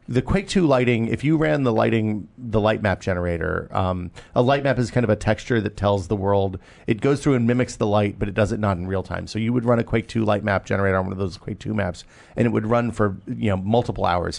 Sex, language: male, English